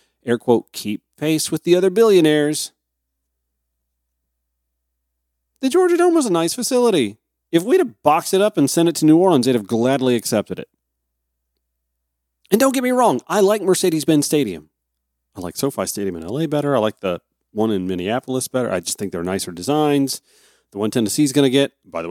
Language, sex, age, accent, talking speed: English, male, 40-59, American, 185 wpm